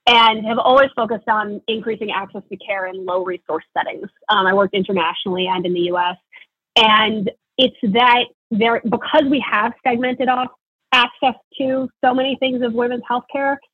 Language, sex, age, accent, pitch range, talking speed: English, female, 30-49, American, 200-230 Hz, 170 wpm